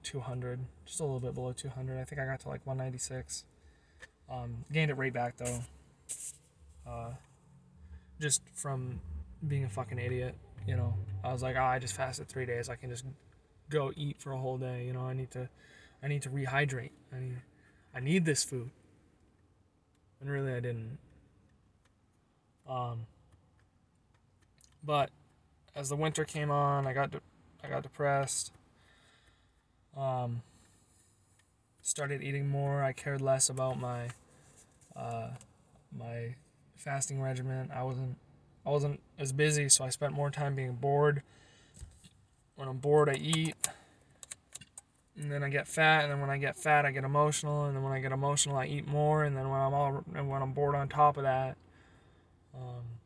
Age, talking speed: 20-39, 165 wpm